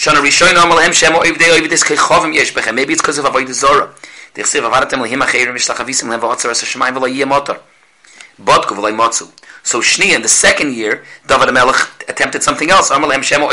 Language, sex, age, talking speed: English, male, 40-59, 70 wpm